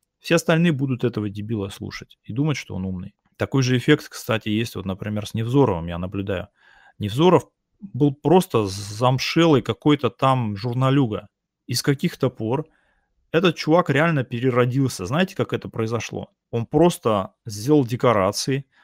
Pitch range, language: 110-150 Hz, English